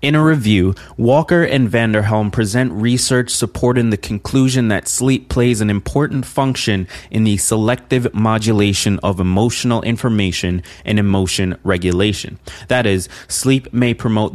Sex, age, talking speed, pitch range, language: male, 20-39, 135 wpm, 100-125 Hz, English